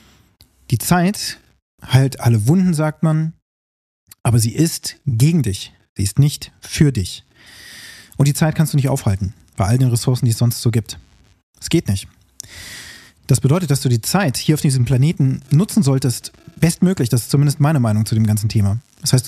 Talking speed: 185 wpm